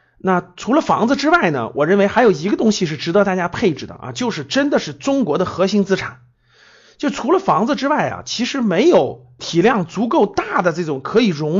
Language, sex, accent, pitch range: Chinese, male, native, 175-245 Hz